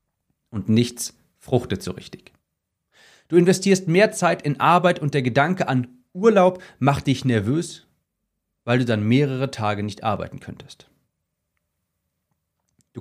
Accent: German